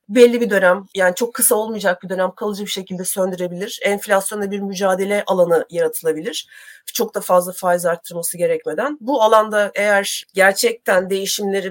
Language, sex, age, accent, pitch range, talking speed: Turkish, female, 30-49, native, 185-225 Hz, 150 wpm